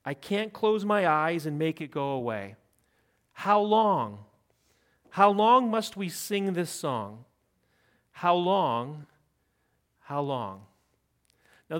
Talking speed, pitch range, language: 120 wpm, 145-205 Hz, English